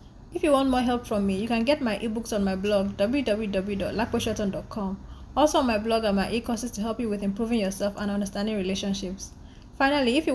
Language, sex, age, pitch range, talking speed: English, female, 20-39, 200-250 Hz, 205 wpm